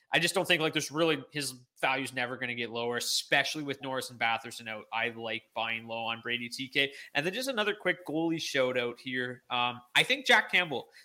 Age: 20-39